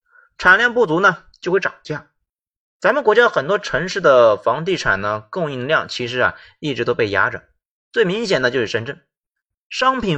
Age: 30-49